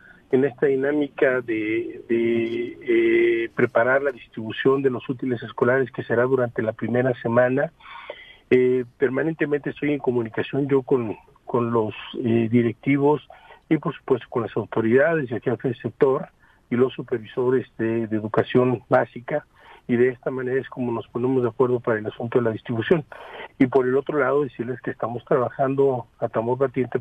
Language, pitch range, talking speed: Spanish, 115-135 Hz, 165 wpm